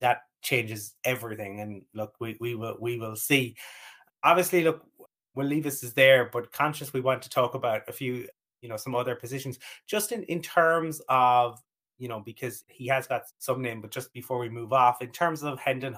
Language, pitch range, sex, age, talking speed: English, 115-135 Hz, male, 30-49, 205 wpm